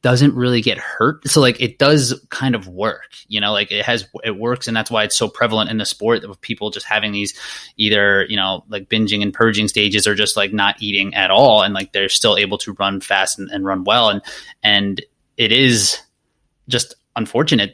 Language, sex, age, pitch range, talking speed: English, male, 20-39, 105-125 Hz, 220 wpm